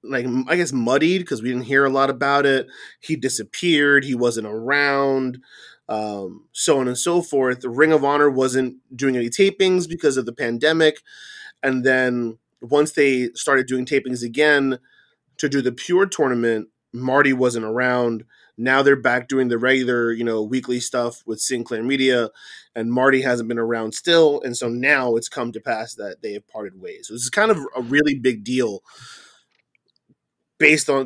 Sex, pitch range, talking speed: male, 125-150 Hz, 180 wpm